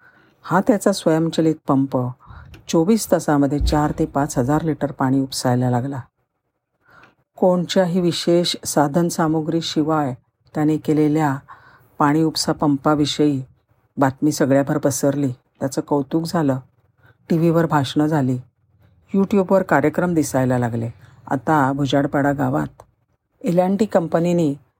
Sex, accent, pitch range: female, native, 135-165 Hz